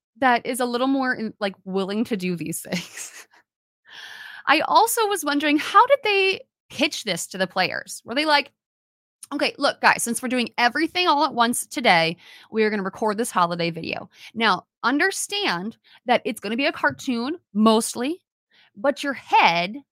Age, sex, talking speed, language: 30-49, female, 170 wpm, English